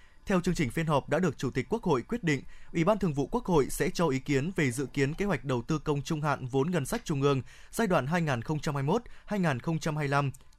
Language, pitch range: Vietnamese, 140-185 Hz